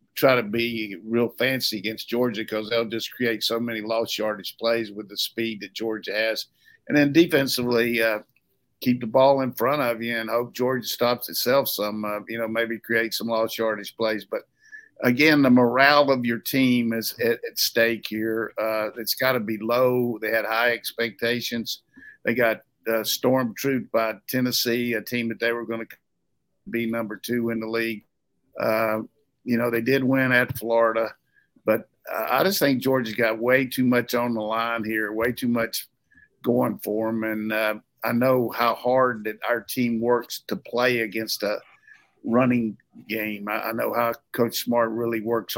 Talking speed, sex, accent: 185 wpm, male, American